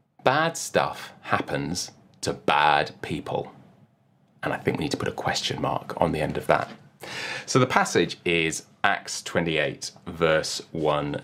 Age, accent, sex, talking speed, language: 30-49, British, male, 155 wpm, English